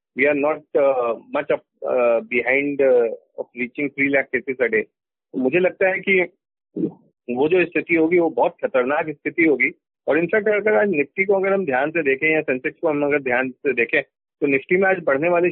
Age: 40-59